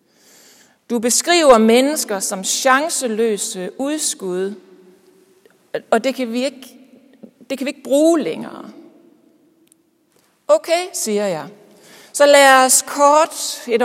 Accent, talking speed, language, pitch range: native, 95 wpm, Danish, 195-285 Hz